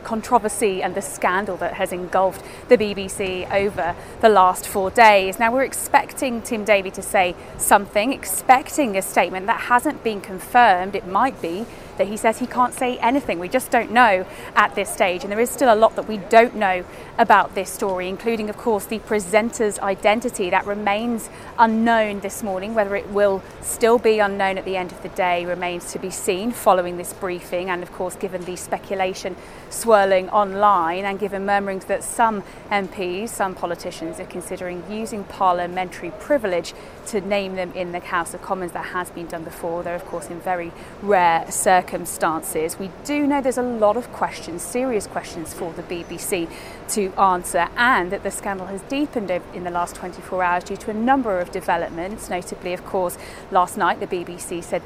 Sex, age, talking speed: female, 30-49, 185 wpm